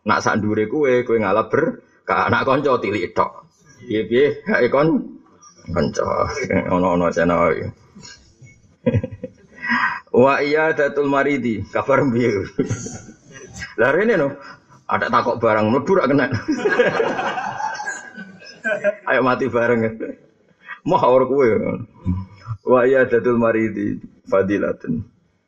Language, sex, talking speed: Indonesian, male, 100 wpm